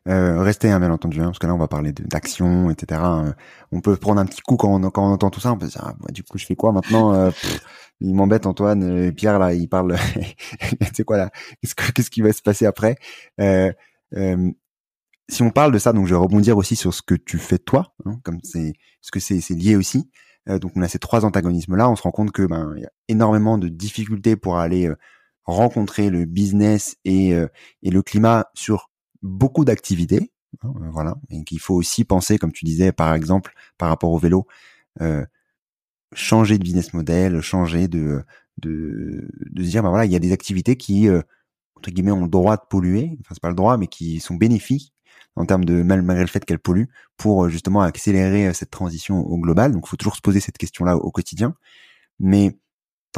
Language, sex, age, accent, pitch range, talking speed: French, male, 20-39, French, 90-105 Hz, 225 wpm